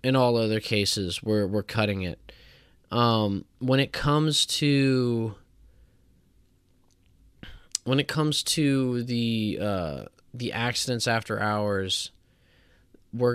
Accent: American